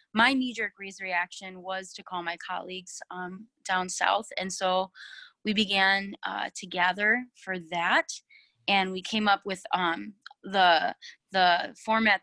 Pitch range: 180-210 Hz